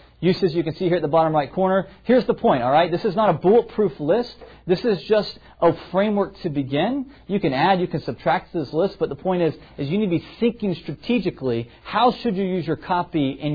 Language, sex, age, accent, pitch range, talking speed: English, male, 40-59, American, 135-190 Hz, 240 wpm